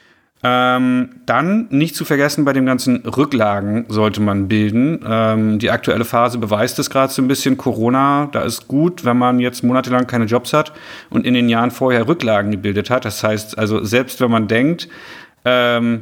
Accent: German